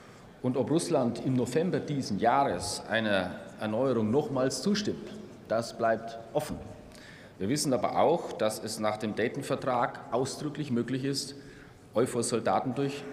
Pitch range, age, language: 105-130 Hz, 30-49, German